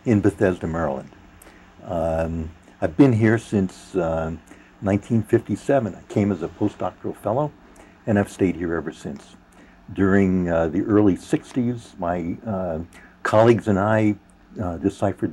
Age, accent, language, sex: 60-79, American, English, male